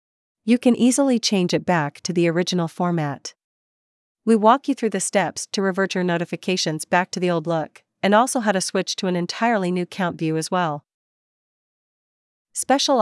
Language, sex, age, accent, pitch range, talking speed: English, female, 40-59, American, 165-210 Hz, 180 wpm